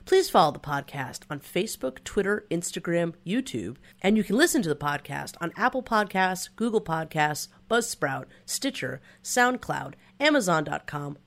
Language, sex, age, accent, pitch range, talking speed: English, female, 30-49, American, 145-210 Hz, 135 wpm